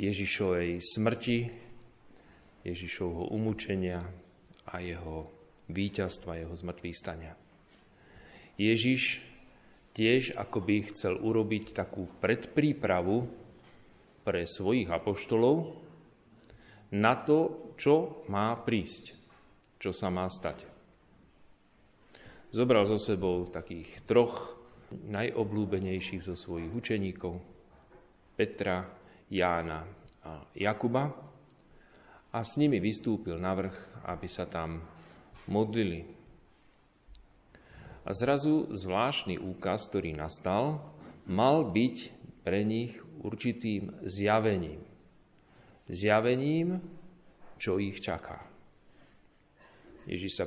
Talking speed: 85 wpm